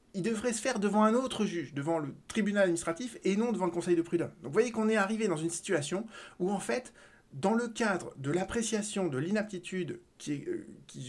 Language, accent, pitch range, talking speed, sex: French, French, 155-210 Hz, 215 wpm, male